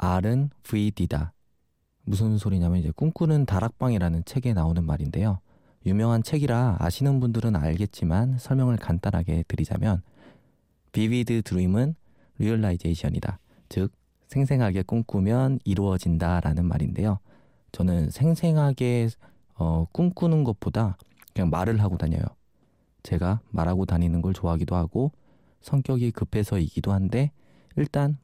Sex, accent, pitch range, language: male, native, 85-115 Hz, Korean